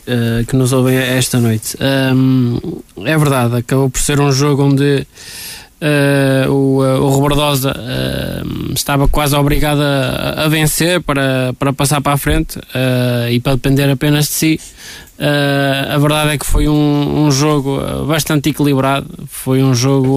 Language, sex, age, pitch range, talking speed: Portuguese, male, 20-39, 130-145 Hz, 140 wpm